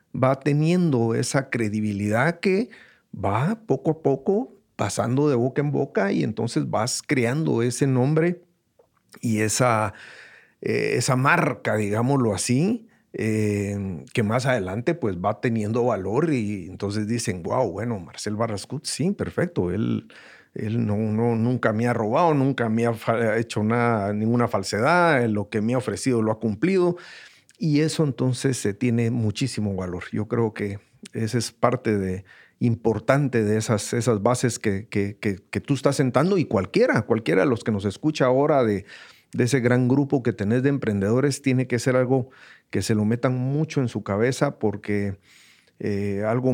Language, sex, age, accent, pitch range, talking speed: Spanish, male, 50-69, Mexican, 105-135 Hz, 160 wpm